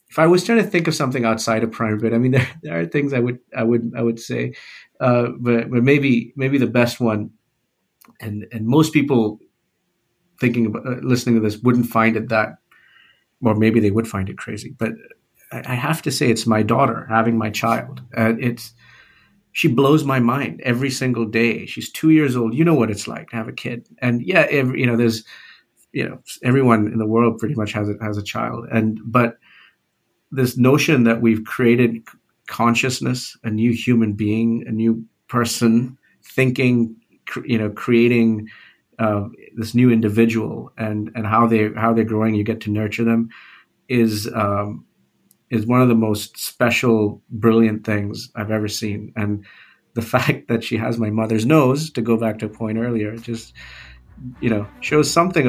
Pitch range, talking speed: 110-125 Hz, 190 wpm